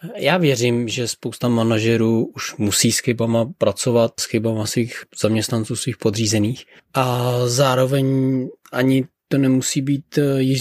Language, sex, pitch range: Czech, male, 140-160 Hz